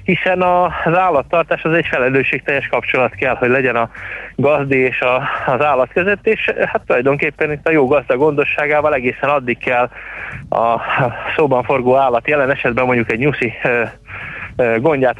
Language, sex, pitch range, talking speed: Hungarian, male, 120-150 Hz, 150 wpm